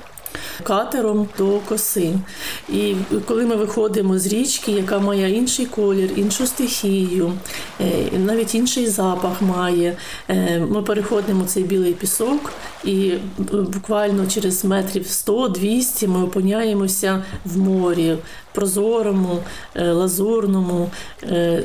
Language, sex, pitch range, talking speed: Ukrainian, female, 195-225 Hz, 95 wpm